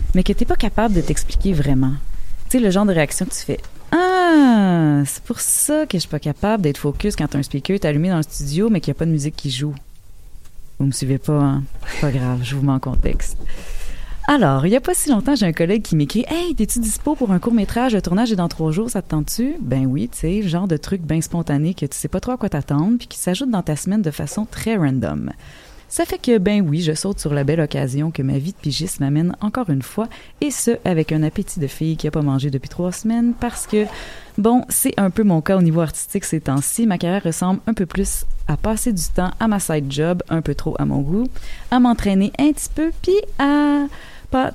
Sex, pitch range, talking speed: female, 145-215 Hz, 260 wpm